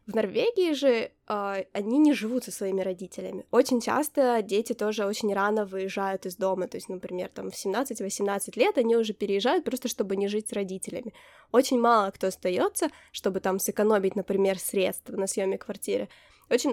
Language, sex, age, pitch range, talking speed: Ukrainian, female, 10-29, 205-260 Hz, 170 wpm